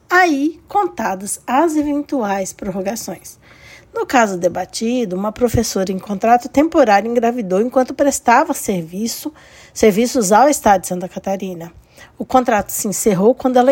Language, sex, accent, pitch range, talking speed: Portuguese, female, Brazilian, 200-275 Hz, 125 wpm